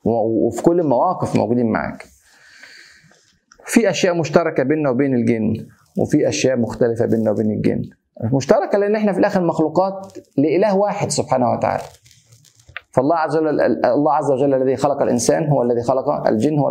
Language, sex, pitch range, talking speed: Arabic, male, 125-170 Hz, 150 wpm